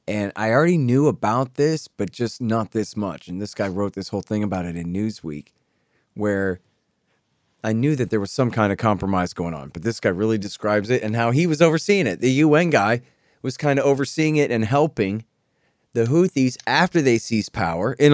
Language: English